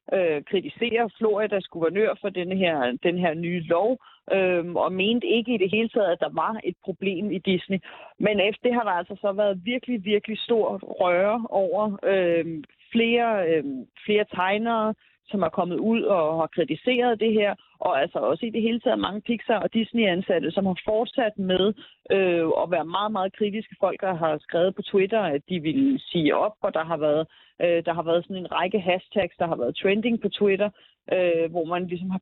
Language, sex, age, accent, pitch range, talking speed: Danish, female, 30-49, native, 180-225 Hz, 190 wpm